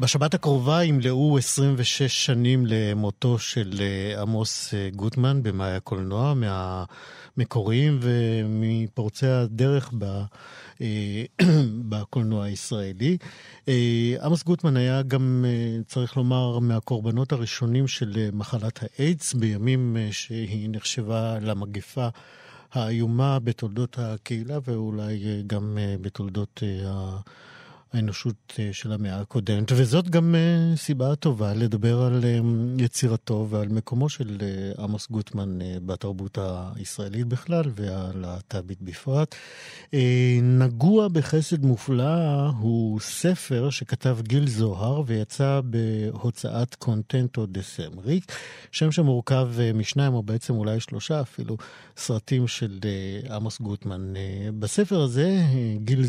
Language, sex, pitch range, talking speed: Hebrew, male, 105-130 Hz, 95 wpm